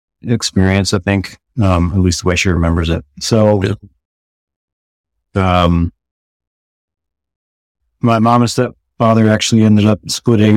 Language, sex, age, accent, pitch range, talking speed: English, male, 30-49, American, 80-105 Hz, 120 wpm